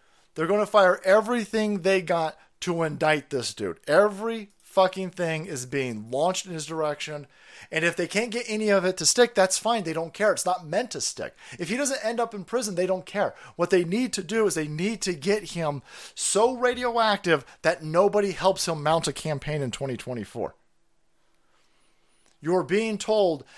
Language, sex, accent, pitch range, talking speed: English, male, American, 150-205 Hz, 190 wpm